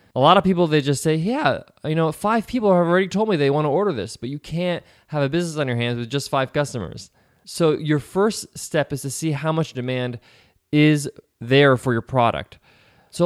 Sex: male